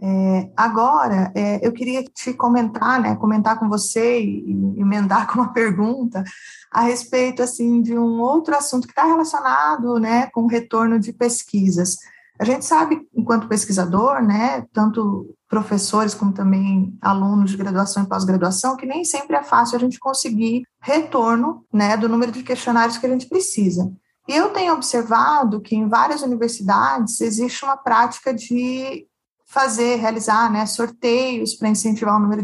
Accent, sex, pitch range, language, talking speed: Brazilian, female, 210-245 Hz, Portuguese, 155 wpm